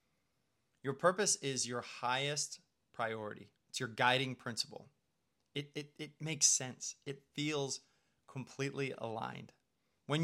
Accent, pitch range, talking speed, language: American, 125-160 Hz, 115 wpm, English